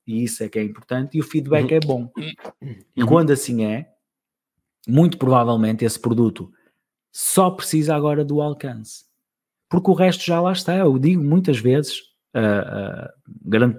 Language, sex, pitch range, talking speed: Portuguese, male, 115-155 Hz, 160 wpm